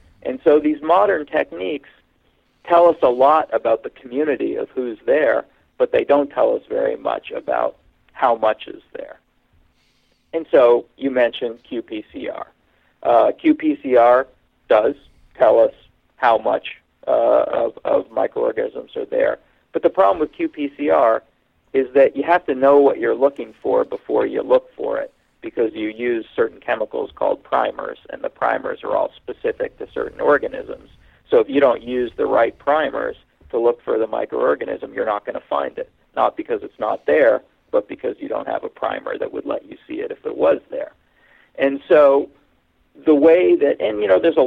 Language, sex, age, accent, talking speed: English, male, 50-69, American, 180 wpm